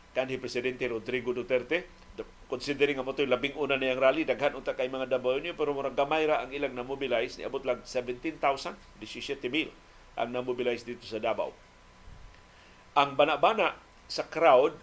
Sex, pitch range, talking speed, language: male, 110-150 Hz, 155 wpm, Filipino